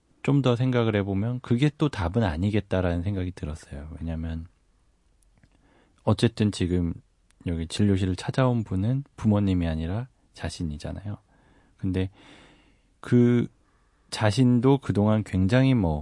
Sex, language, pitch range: male, Korean, 85-115 Hz